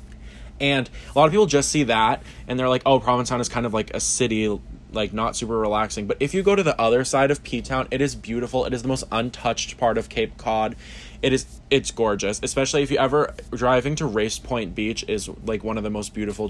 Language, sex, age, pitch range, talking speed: English, male, 20-39, 110-140 Hz, 235 wpm